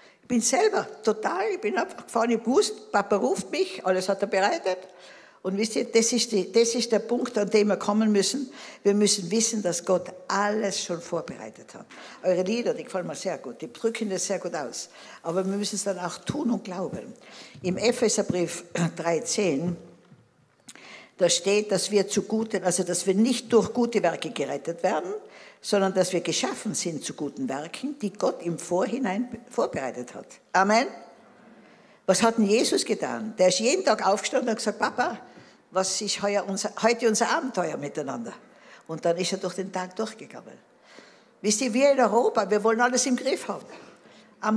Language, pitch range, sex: German, 185-230 Hz, female